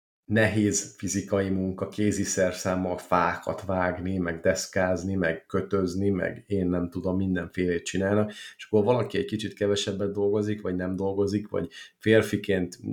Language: Hungarian